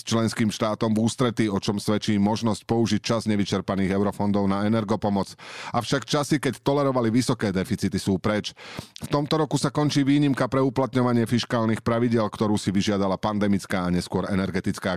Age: 40-59